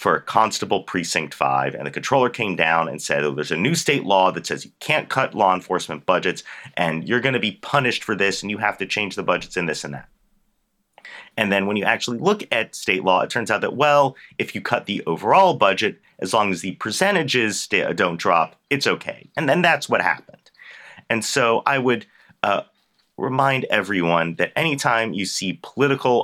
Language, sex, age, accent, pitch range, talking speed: English, male, 30-49, American, 85-115 Hz, 205 wpm